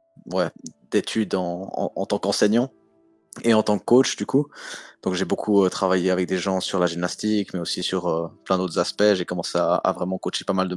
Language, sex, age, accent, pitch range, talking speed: French, male, 20-39, French, 90-105 Hz, 230 wpm